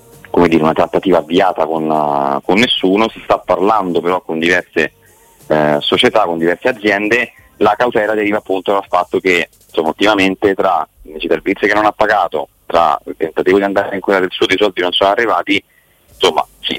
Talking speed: 185 wpm